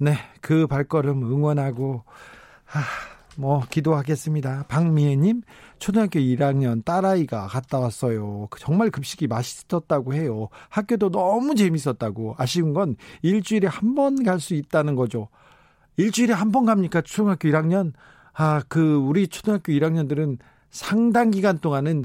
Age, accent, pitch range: 50-69, native, 140-190 Hz